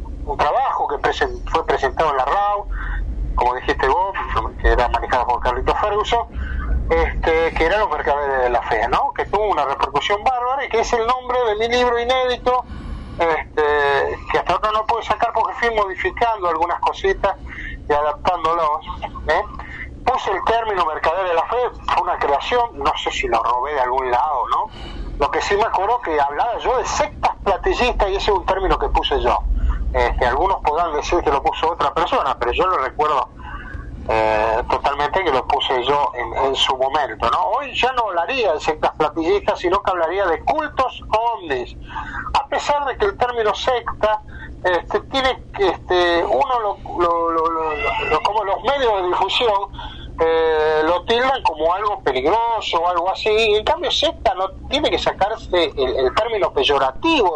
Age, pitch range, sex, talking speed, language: 30-49, 165-245 Hz, male, 185 wpm, Spanish